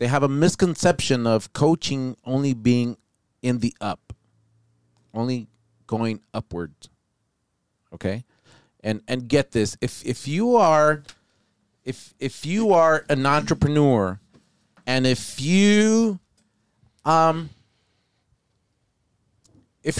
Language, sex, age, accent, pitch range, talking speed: English, male, 40-59, American, 115-150 Hz, 100 wpm